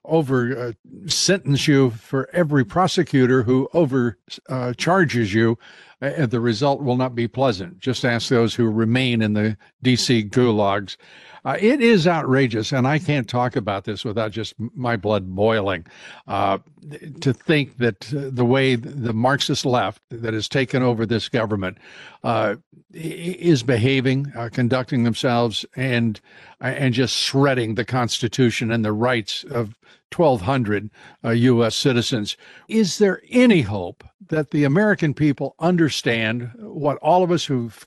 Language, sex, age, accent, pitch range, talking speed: English, male, 60-79, American, 115-155 Hz, 150 wpm